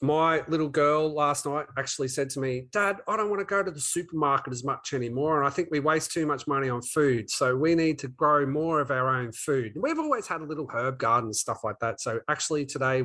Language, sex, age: English, male, 30-49